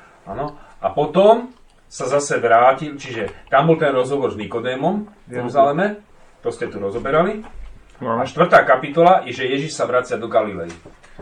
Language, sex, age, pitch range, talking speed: Slovak, male, 40-59, 105-140 Hz, 155 wpm